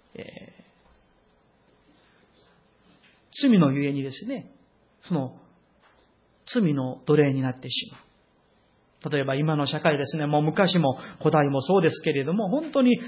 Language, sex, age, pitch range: Japanese, male, 40-59, 155-230 Hz